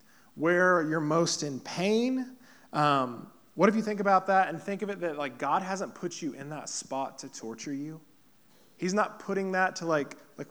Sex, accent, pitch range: male, American, 140-185 Hz